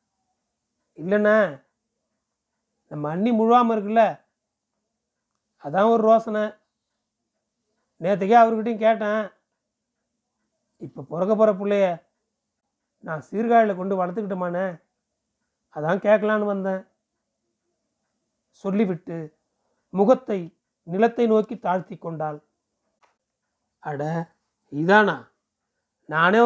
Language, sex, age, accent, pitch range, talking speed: Tamil, male, 40-59, native, 180-225 Hz, 70 wpm